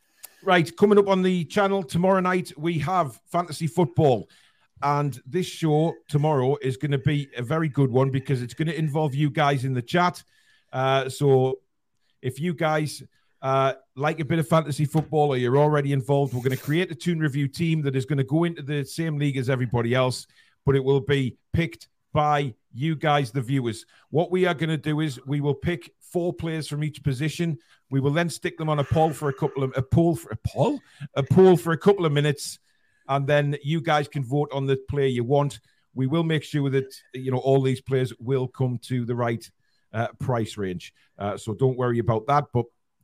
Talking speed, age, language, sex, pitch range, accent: 215 wpm, 40-59, English, male, 130-160 Hz, British